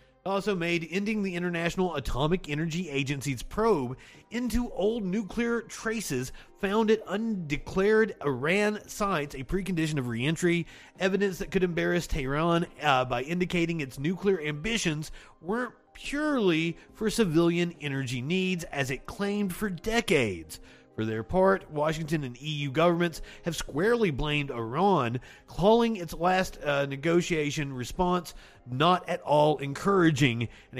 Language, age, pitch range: English, 30-49, 135-185 Hz